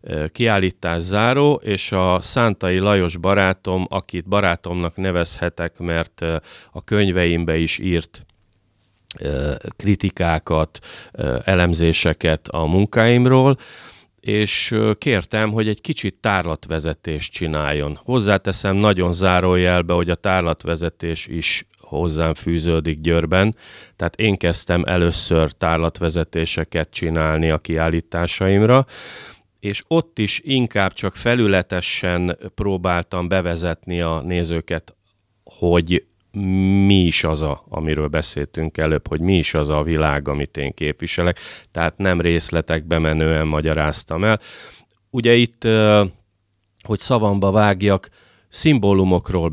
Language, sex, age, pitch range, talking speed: Hungarian, male, 30-49, 80-100 Hz, 100 wpm